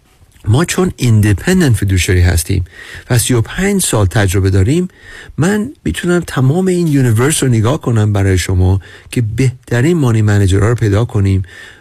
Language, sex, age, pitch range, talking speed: Persian, male, 50-69, 100-135 Hz, 135 wpm